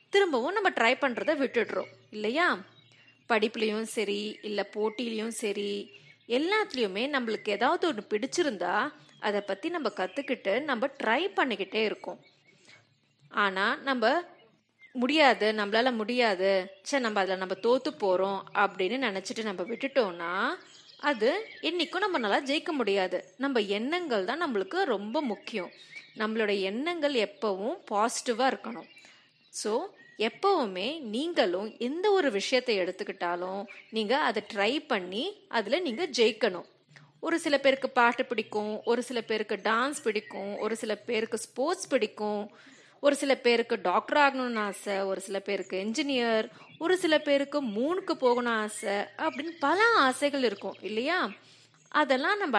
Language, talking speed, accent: Tamil, 120 wpm, native